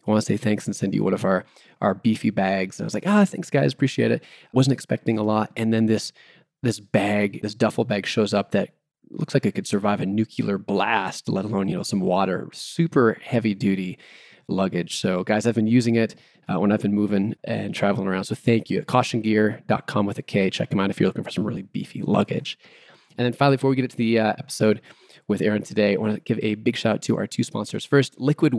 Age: 20-39